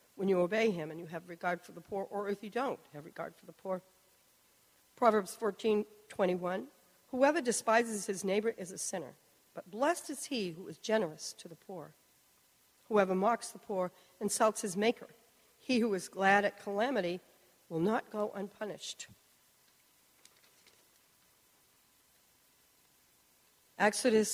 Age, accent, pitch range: 50-69, American, 185-240 Hz